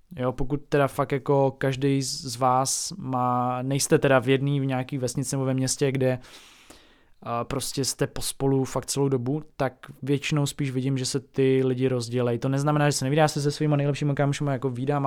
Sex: male